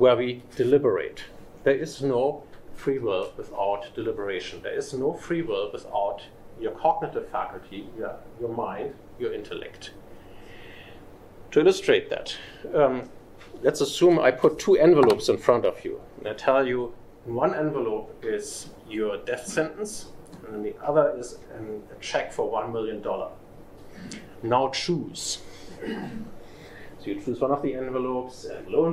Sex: male